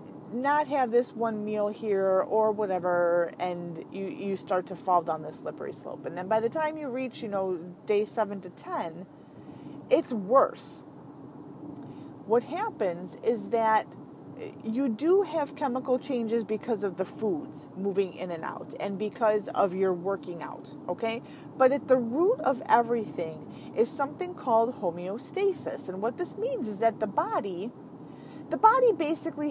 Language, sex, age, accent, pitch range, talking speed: English, female, 30-49, American, 200-270 Hz, 160 wpm